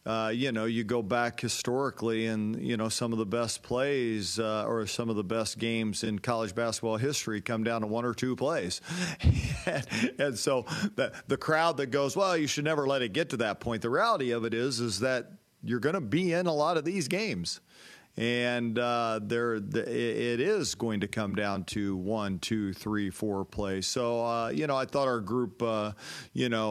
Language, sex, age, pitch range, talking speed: English, male, 40-59, 105-120 Hz, 215 wpm